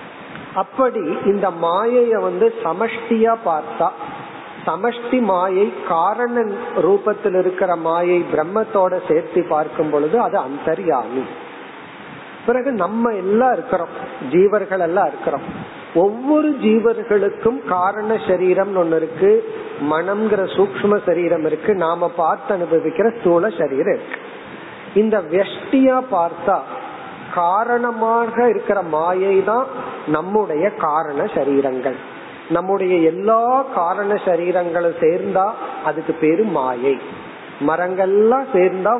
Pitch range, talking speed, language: 175-235 Hz, 90 wpm, Tamil